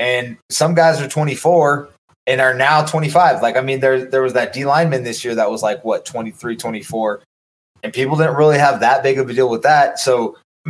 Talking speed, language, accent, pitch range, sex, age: 220 wpm, English, American, 115-135 Hz, male, 20-39